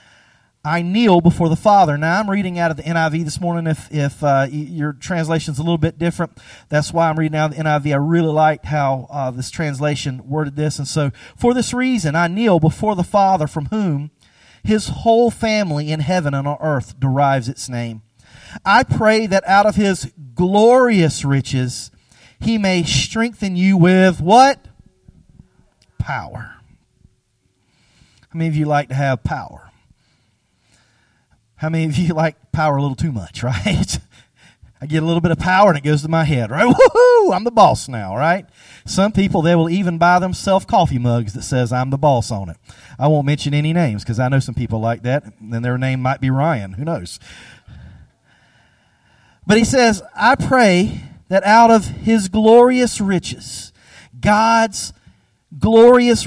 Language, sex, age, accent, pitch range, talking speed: English, male, 40-59, American, 135-190 Hz, 180 wpm